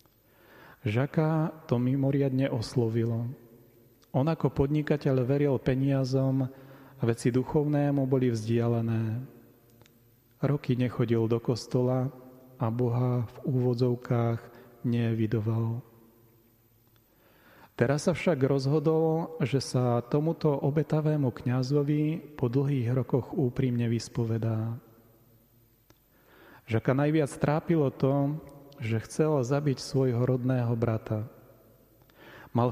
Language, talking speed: Slovak, 90 wpm